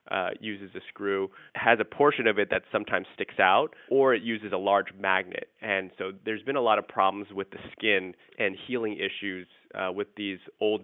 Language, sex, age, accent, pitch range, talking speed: English, male, 20-39, American, 100-115 Hz, 205 wpm